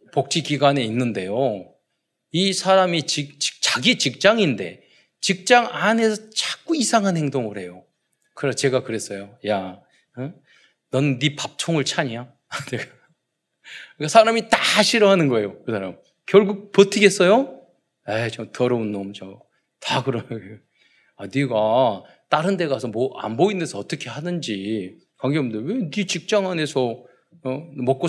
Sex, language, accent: male, Korean, native